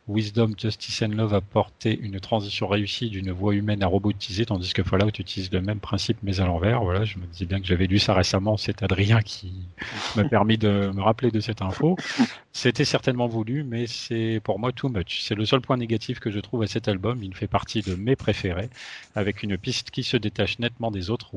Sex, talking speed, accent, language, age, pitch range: male, 225 wpm, French, French, 40-59, 100-120 Hz